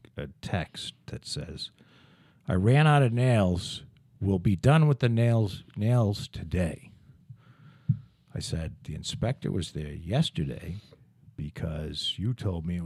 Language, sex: English, male